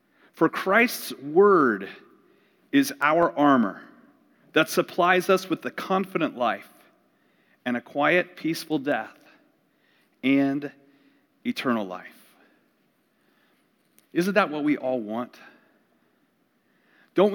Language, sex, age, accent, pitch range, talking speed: English, male, 40-59, American, 140-210 Hz, 95 wpm